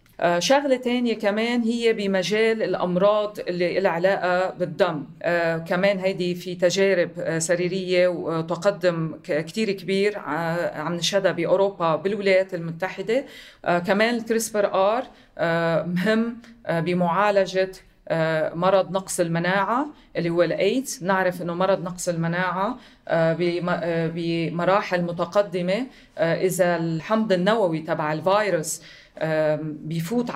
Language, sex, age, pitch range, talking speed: Arabic, female, 30-49, 170-200 Hz, 110 wpm